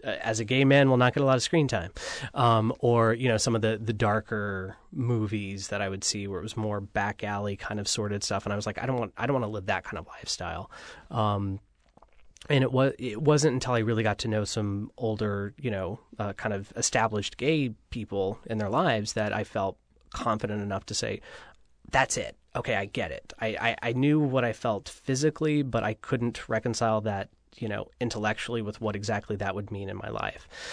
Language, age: English, 20-39